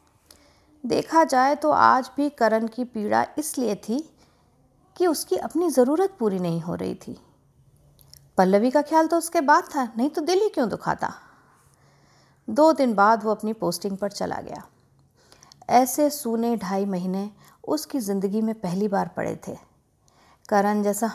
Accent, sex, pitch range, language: native, female, 200-290 Hz, Hindi